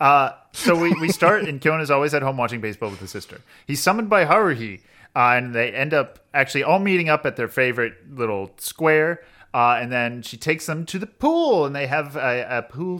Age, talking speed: 30-49, 220 wpm